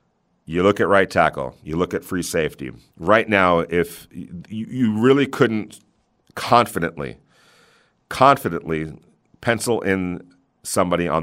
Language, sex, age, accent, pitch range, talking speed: English, male, 40-59, American, 85-105 Hz, 120 wpm